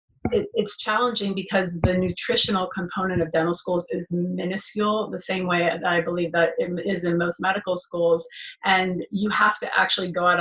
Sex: female